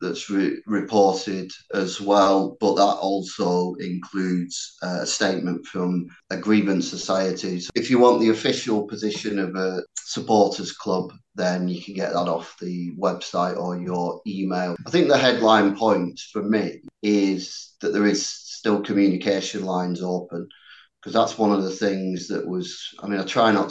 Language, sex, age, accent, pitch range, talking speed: English, male, 30-49, British, 90-105 Hz, 160 wpm